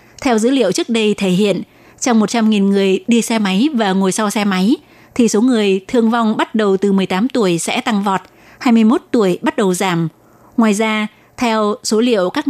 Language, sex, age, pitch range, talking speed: Vietnamese, female, 20-39, 195-235 Hz, 200 wpm